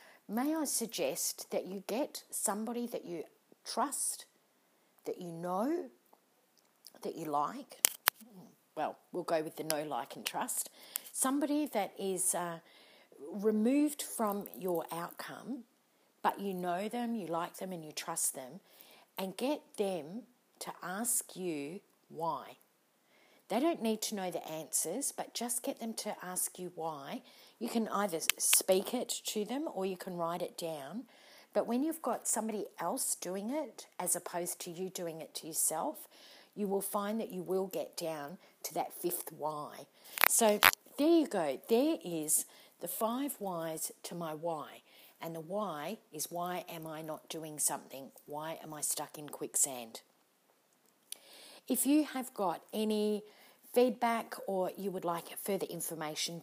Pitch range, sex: 170-240 Hz, female